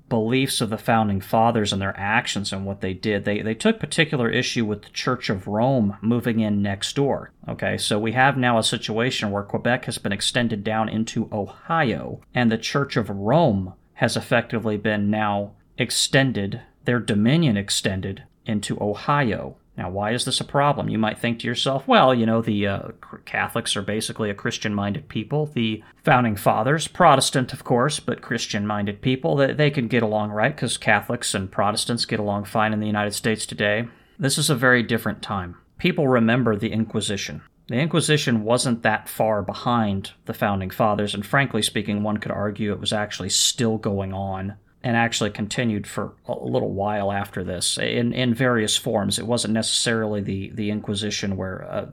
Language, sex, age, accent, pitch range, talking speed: English, male, 40-59, American, 105-120 Hz, 180 wpm